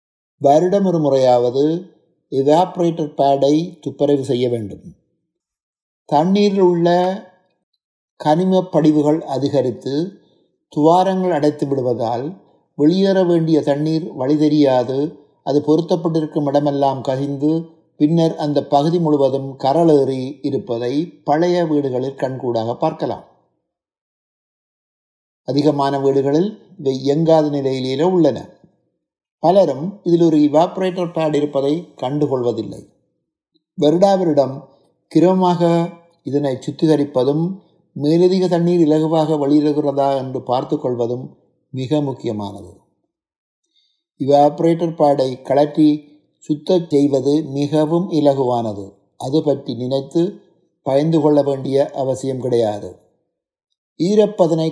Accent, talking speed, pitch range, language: native, 80 wpm, 135-170 Hz, Tamil